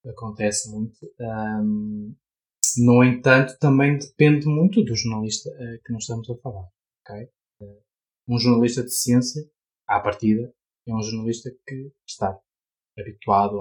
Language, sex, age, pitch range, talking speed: Portuguese, male, 20-39, 110-135 Hz, 120 wpm